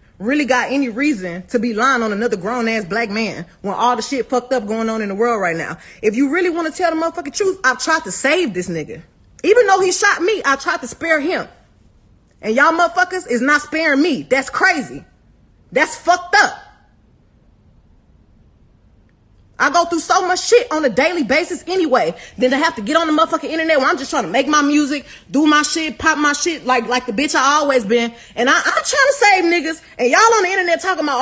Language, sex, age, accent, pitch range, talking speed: English, female, 30-49, American, 260-380 Hz, 225 wpm